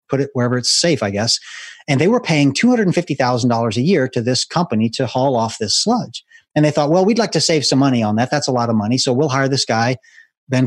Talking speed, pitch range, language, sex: 255 wpm, 125-165 Hz, English, male